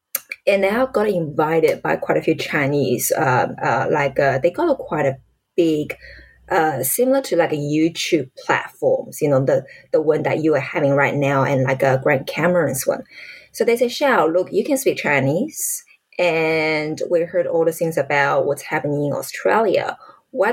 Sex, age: female, 20-39